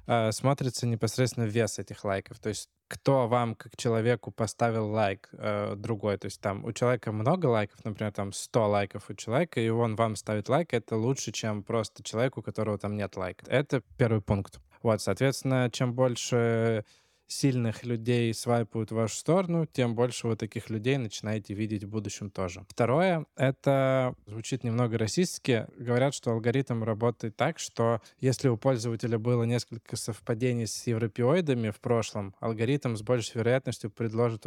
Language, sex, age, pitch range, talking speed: Russian, male, 20-39, 110-125 Hz, 160 wpm